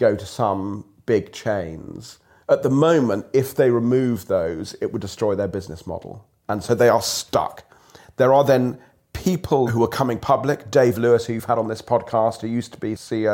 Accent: British